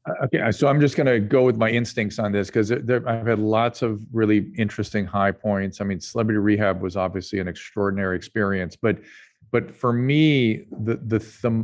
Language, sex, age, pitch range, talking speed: English, male, 40-59, 100-120 Hz, 190 wpm